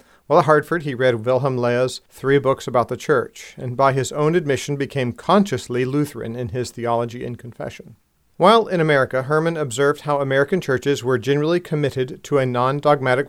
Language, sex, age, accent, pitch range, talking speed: English, male, 40-59, American, 130-160 Hz, 175 wpm